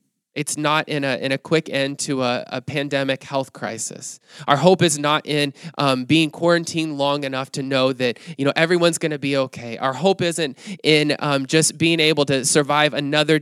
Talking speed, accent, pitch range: 195 wpm, American, 125-155 Hz